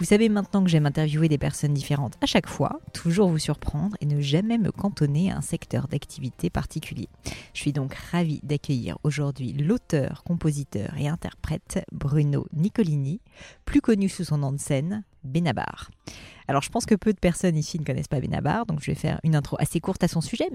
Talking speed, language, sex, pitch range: 200 wpm, French, female, 145-180 Hz